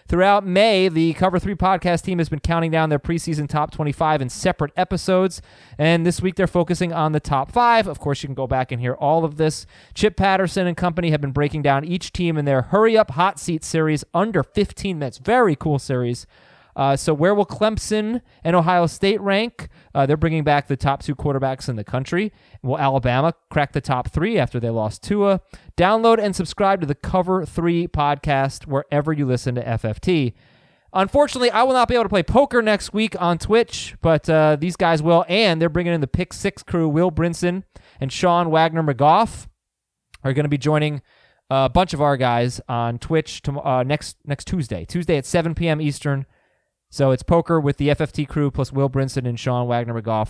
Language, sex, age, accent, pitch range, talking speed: English, male, 30-49, American, 135-185 Hz, 205 wpm